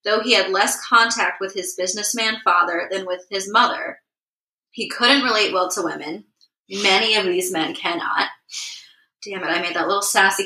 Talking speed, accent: 180 wpm, American